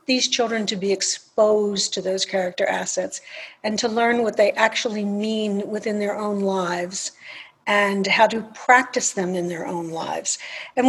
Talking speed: 165 wpm